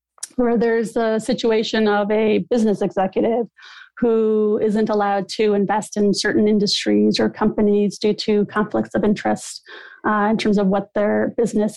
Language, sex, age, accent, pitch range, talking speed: English, female, 30-49, American, 195-230 Hz, 155 wpm